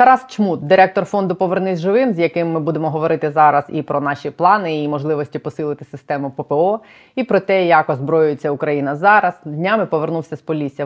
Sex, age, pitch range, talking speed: female, 20-39, 145-170 Hz, 175 wpm